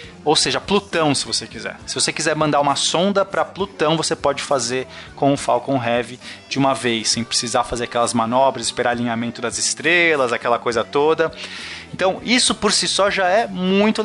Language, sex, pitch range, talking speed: Portuguese, male, 135-195 Hz, 190 wpm